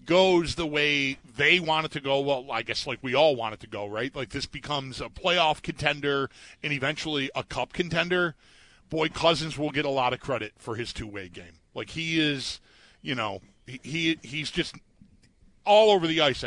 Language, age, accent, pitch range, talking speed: English, 40-59, American, 125-165 Hz, 205 wpm